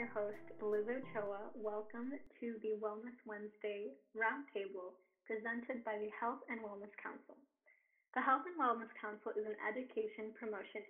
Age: 20-39